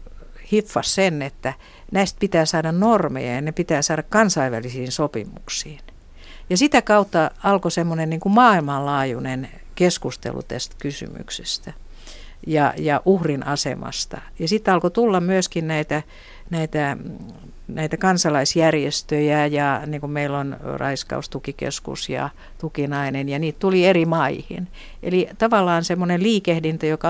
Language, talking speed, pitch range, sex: Finnish, 110 wpm, 145-190 Hz, female